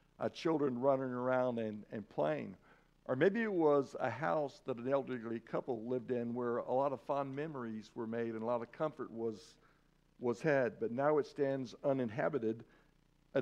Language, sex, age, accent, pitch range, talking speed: English, male, 60-79, American, 125-155 Hz, 185 wpm